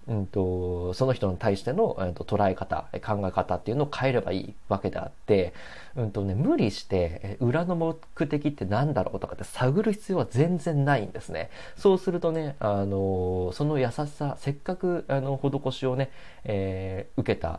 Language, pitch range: Japanese, 95-140 Hz